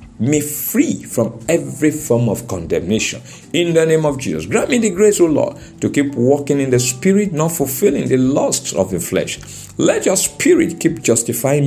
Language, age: English, 50-69